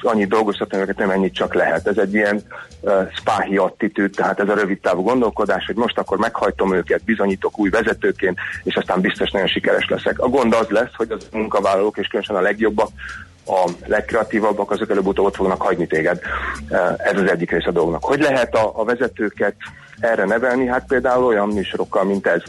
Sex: male